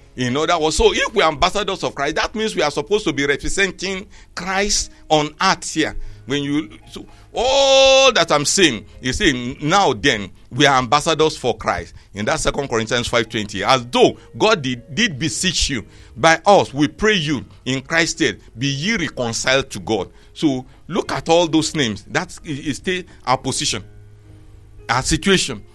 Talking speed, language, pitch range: 175 wpm, English, 115-170 Hz